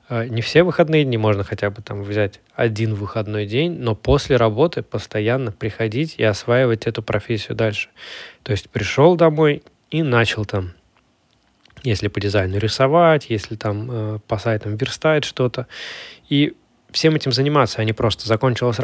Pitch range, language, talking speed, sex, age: 110-140 Hz, Russian, 155 wpm, male, 20-39